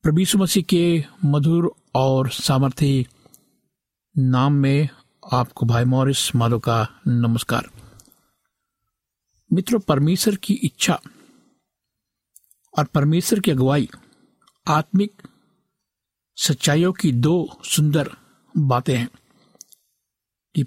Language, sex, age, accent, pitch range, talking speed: Hindi, male, 60-79, native, 135-195 Hz, 85 wpm